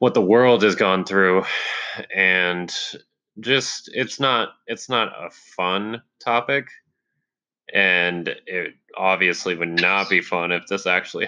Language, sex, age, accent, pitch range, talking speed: English, male, 20-39, American, 90-110 Hz, 135 wpm